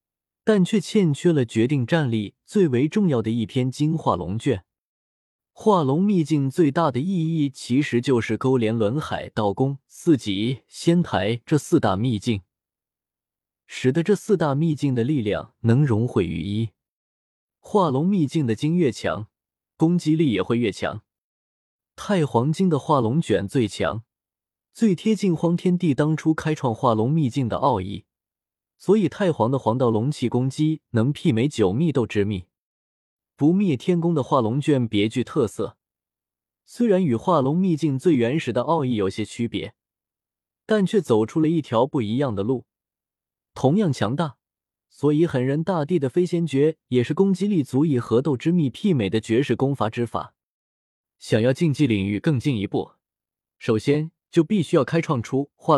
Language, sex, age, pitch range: Chinese, male, 20-39, 110-165 Hz